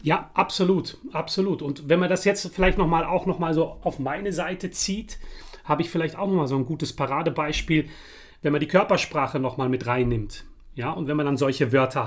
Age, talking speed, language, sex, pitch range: 40-59, 205 wpm, German, male, 130-175 Hz